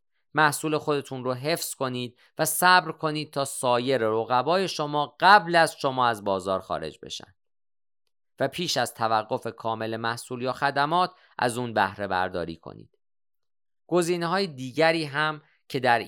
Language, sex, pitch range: Persian, male, 115-155 Hz